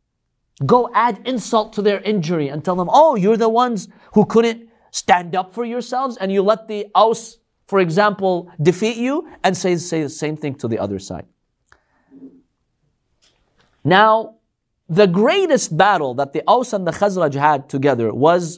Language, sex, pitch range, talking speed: English, male, 155-220 Hz, 165 wpm